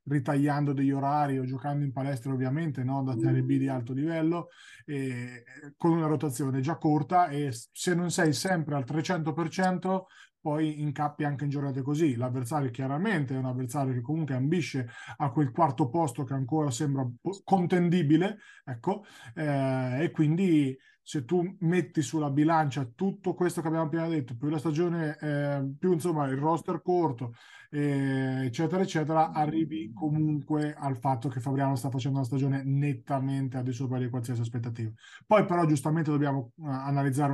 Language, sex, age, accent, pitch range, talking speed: Italian, male, 30-49, native, 135-160 Hz, 160 wpm